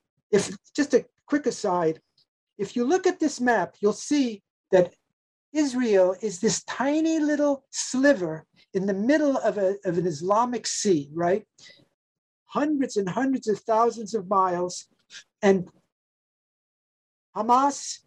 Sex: male